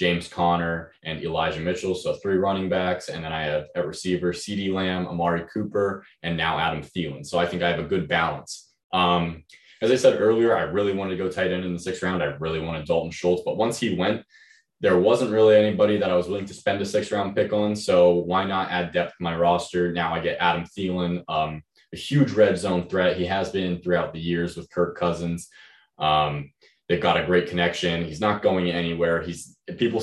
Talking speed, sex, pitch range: 220 wpm, male, 85-95 Hz